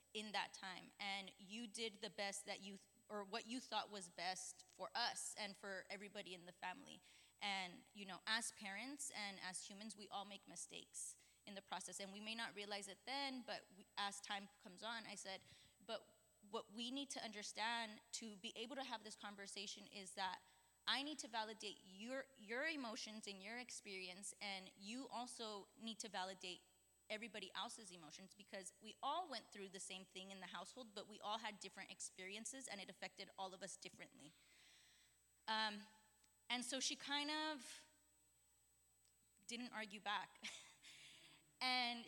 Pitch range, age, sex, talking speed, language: 195-230 Hz, 20-39, female, 175 wpm, English